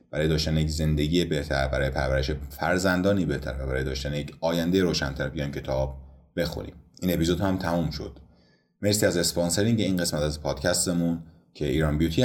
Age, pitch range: 30-49, 70-90 Hz